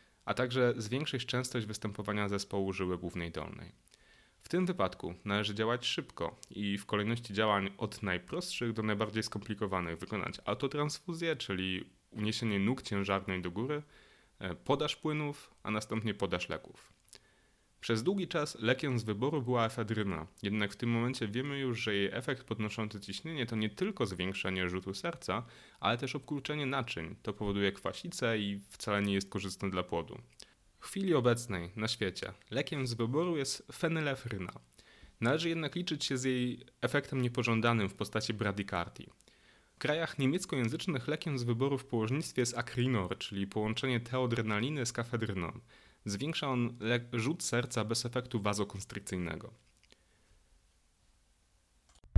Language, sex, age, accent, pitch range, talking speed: Polish, male, 30-49, native, 100-130 Hz, 140 wpm